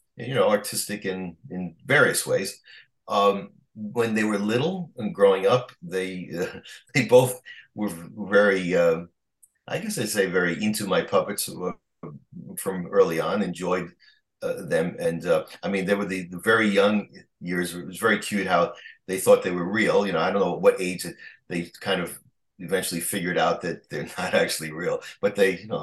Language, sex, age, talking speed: English, male, 40-59, 180 wpm